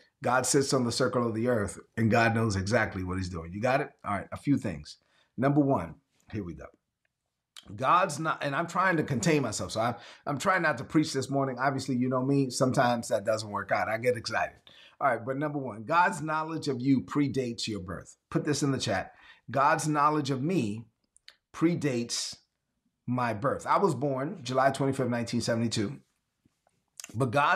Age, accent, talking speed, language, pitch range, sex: 30-49, American, 185 wpm, English, 120-145 Hz, male